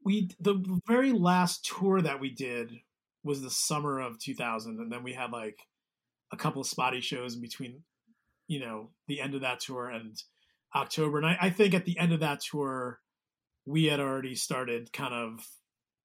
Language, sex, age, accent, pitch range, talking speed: English, male, 30-49, American, 120-165 Hz, 185 wpm